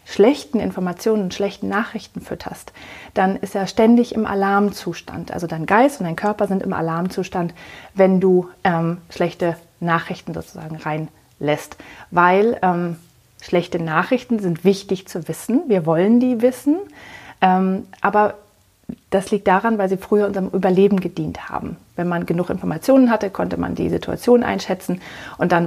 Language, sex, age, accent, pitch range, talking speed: German, female, 30-49, German, 180-215 Hz, 150 wpm